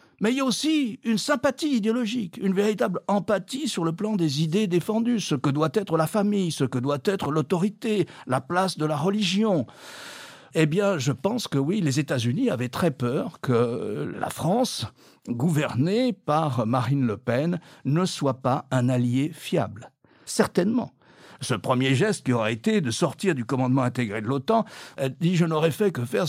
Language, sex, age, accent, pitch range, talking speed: French, male, 60-79, French, 135-210 Hz, 180 wpm